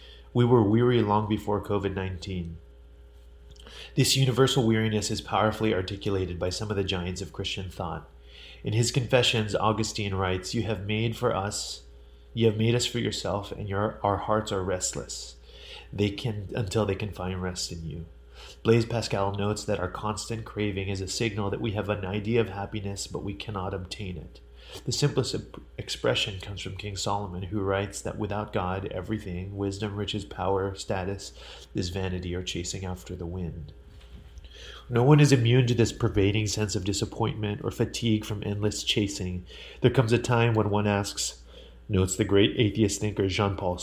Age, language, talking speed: 30-49, English, 170 wpm